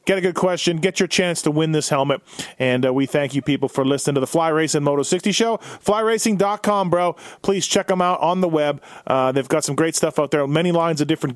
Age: 40-59